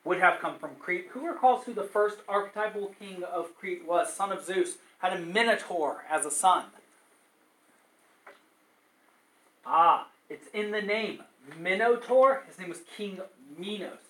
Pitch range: 170-220 Hz